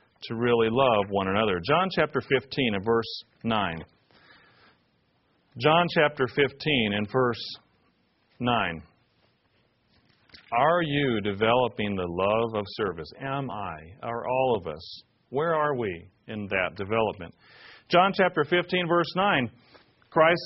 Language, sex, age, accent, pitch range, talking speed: English, male, 40-59, American, 115-175 Hz, 125 wpm